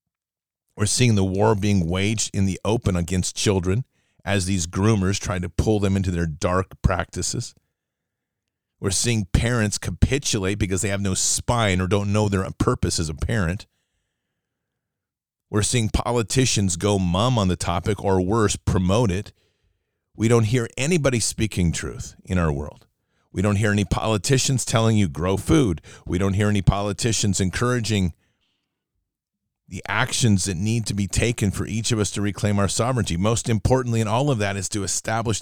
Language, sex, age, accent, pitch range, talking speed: English, male, 40-59, American, 95-115 Hz, 170 wpm